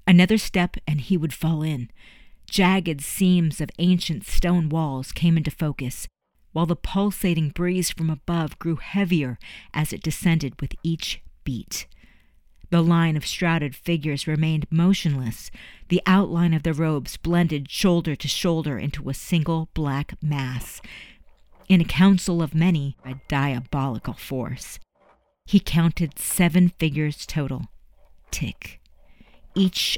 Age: 50-69